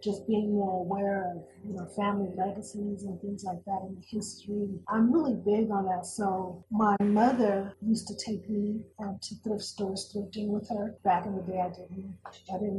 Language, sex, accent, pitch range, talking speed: English, female, American, 190-220 Hz, 190 wpm